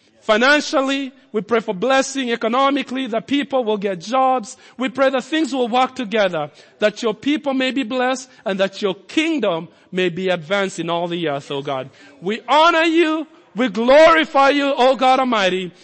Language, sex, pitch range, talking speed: English, male, 190-275 Hz, 175 wpm